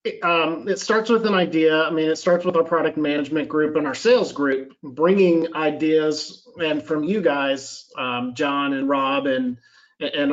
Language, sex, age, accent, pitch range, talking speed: English, male, 40-59, American, 140-165 Hz, 185 wpm